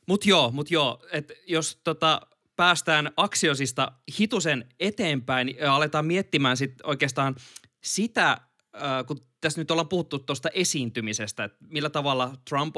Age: 20-39